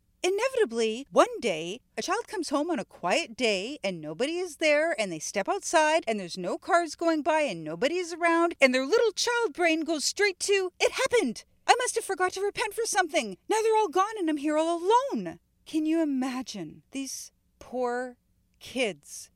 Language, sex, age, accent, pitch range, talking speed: English, female, 40-59, American, 210-340 Hz, 190 wpm